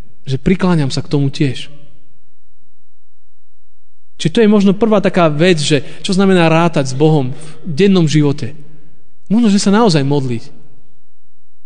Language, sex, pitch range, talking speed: Slovak, male, 120-170 Hz, 140 wpm